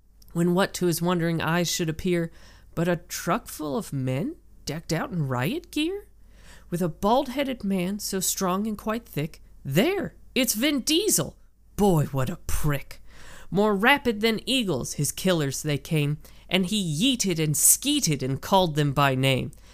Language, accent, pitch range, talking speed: English, American, 150-220 Hz, 165 wpm